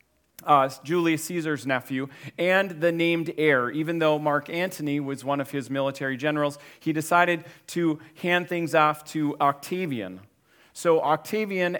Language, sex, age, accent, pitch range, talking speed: English, male, 40-59, American, 140-170 Hz, 140 wpm